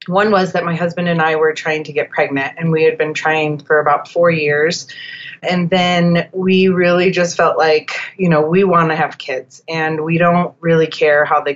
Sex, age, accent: female, 30-49, American